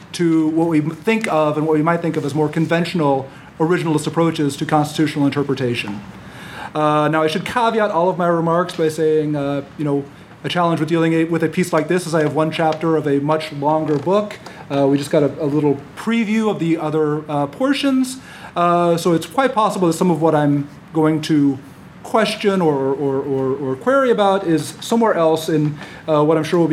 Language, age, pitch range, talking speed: English, 40-59, 150-185 Hz, 210 wpm